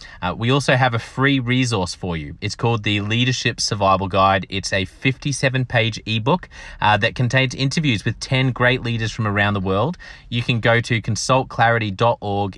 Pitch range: 100-125 Hz